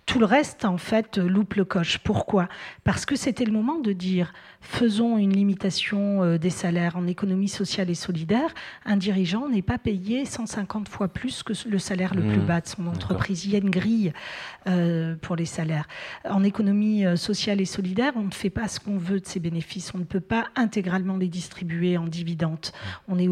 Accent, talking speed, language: French, 200 wpm, French